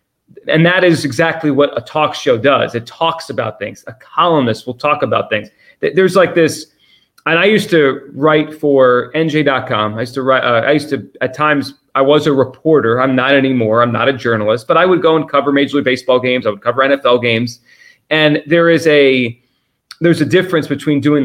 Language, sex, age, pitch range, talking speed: English, male, 30-49, 130-155 Hz, 210 wpm